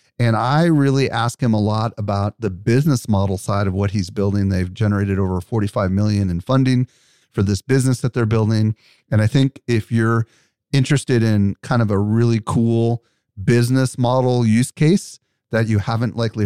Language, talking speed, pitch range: English, 175 wpm, 105-130 Hz